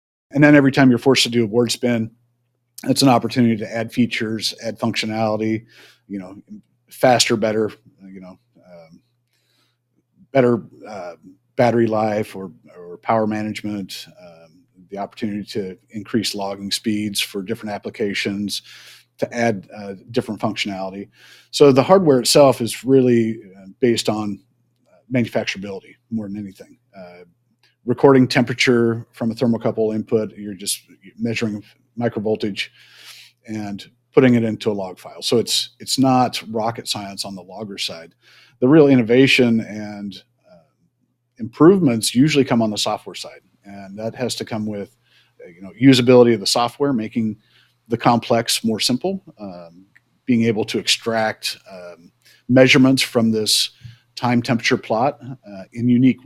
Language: English